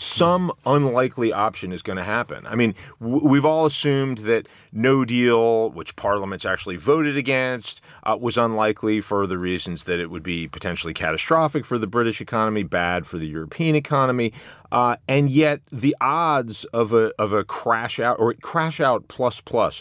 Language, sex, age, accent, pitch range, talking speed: English, male, 30-49, American, 95-135 Hz, 175 wpm